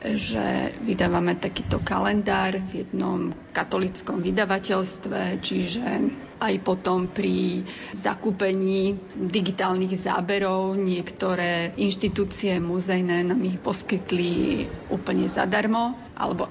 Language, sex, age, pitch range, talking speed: Slovak, female, 30-49, 185-205 Hz, 90 wpm